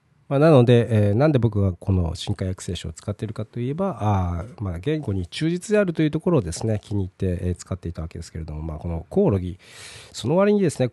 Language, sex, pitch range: Japanese, male, 95-130 Hz